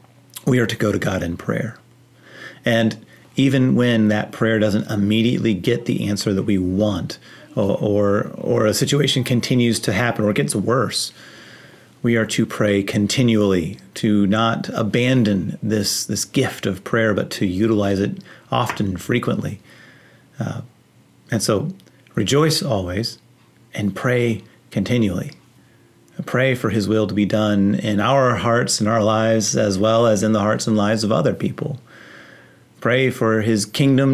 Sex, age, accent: male, 30-49, American